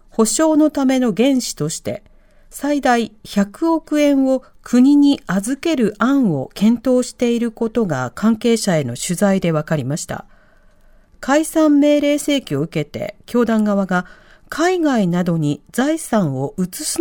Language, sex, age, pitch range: Japanese, female, 40-59, 180-280 Hz